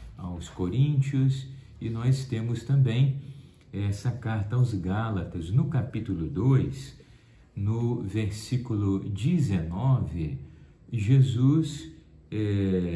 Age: 50-69